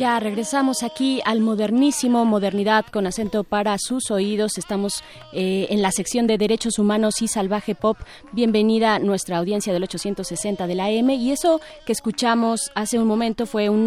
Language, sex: Spanish, female